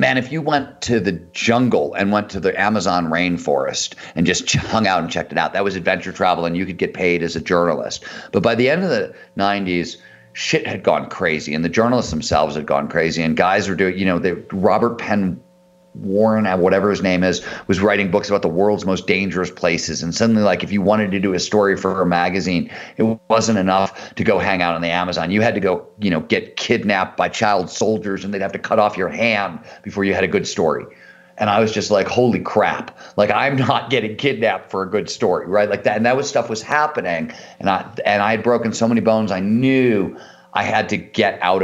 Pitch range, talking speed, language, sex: 90-115 Hz, 235 wpm, English, male